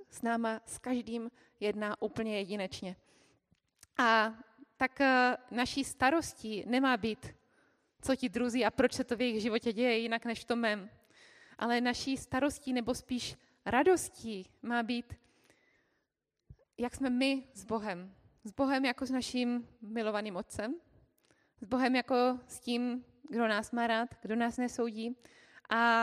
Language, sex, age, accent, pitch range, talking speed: Czech, female, 20-39, native, 220-255 Hz, 140 wpm